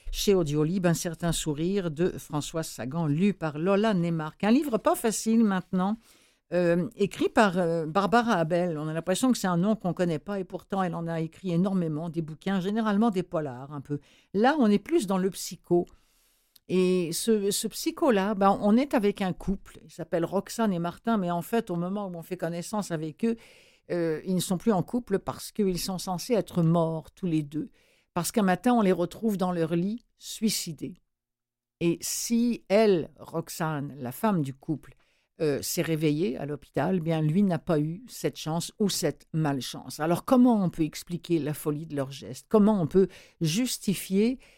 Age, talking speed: 60-79, 195 wpm